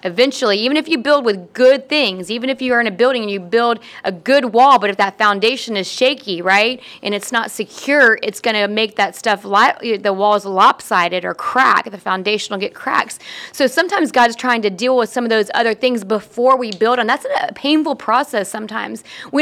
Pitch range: 210-255 Hz